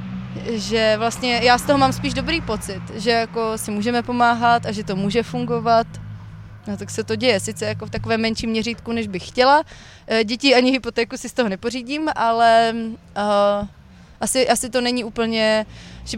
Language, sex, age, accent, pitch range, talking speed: Czech, female, 20-39, native, 225-245 Hz, 180 wpm